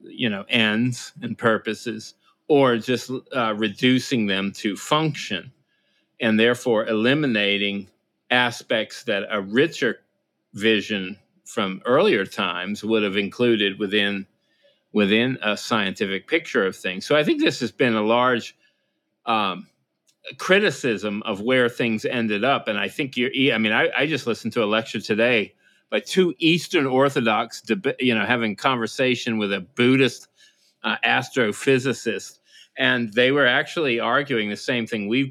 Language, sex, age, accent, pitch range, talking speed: English, male, 40-59, American, 105-125 Hz, 145 wpm